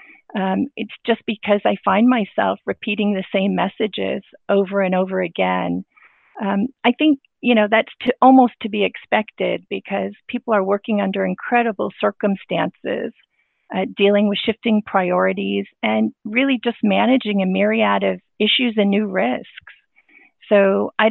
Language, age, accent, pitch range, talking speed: English, 40-59, American, 190-225 Hz, 140 wpm